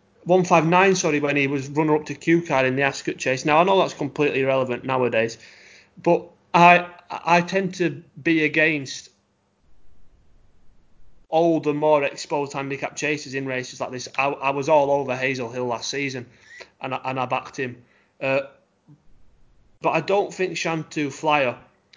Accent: British